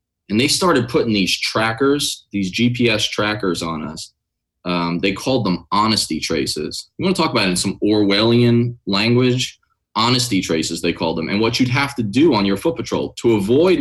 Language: English